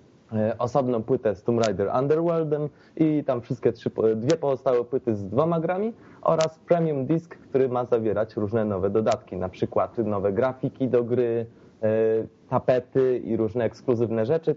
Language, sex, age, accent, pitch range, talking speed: Polish, male, 30-49, native, 115-145 Hz, 150 wpm